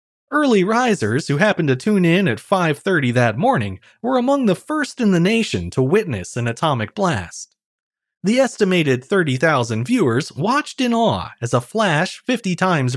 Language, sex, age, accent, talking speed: English, male, 30-49, American, 160 wpm